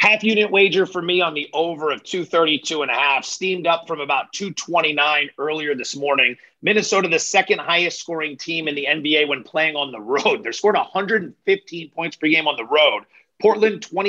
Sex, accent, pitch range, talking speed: male, American, 150-190 Hz, 165 wpm